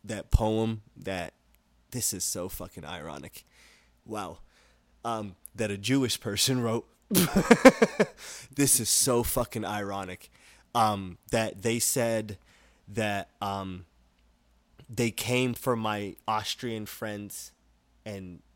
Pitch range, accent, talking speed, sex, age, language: 90-115 Hz, American, 105 wpm, male, 20-39, English